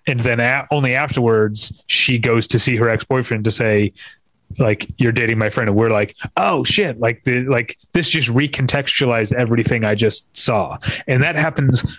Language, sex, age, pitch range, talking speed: English, male, 30-49, 110-135 Hz, 175 wpm